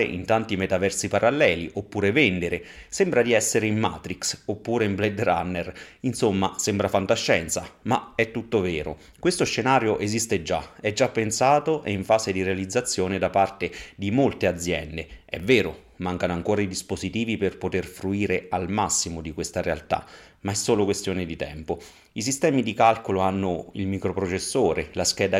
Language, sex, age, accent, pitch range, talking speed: Italian, male, 30-49, native, 90-110 Hz, 160 wpm